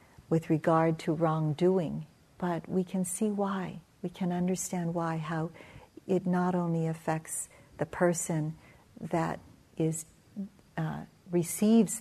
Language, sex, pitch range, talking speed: English, female, 155-180 Hz, 120 wpm